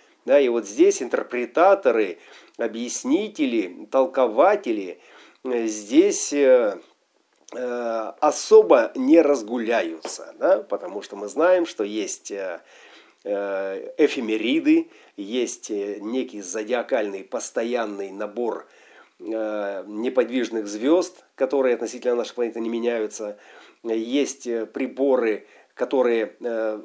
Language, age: Russian, 40-59